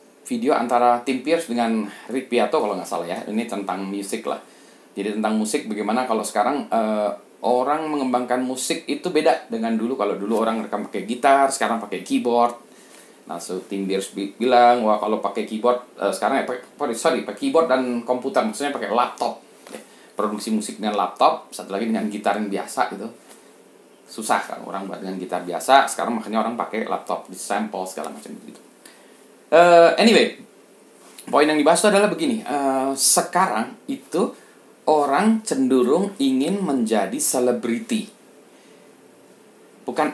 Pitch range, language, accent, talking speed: 110-165 Hz, Indonesian, native, 150 wpm